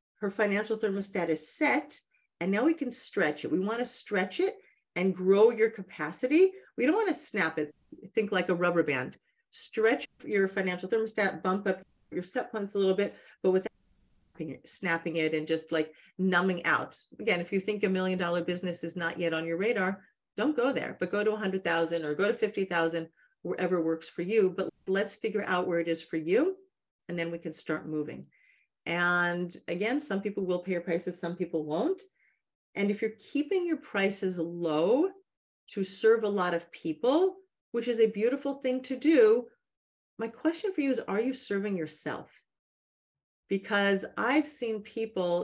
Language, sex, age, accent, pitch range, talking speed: English, female, 40-59, American, 175-220 Hz, 190 wpm